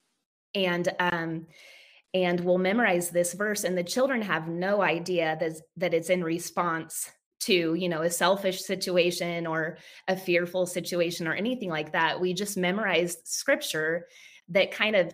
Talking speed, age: 155 wpm, 20-39